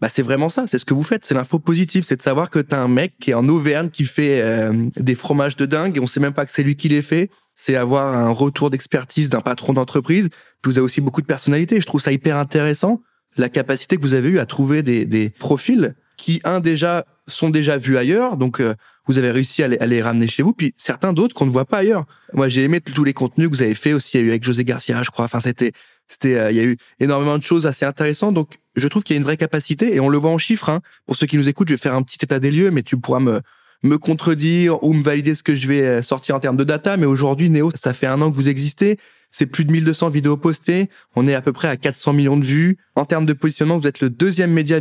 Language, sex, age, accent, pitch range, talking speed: French, male, 20-39, French, 130-160 Hz, 285 wpm